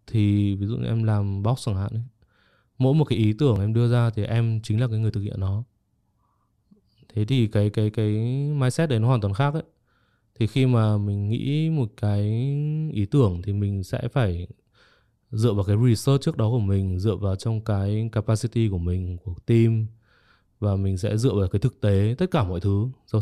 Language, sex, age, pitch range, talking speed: Vietnamese, male, 20-39, 100-125 Hz, 205 wpm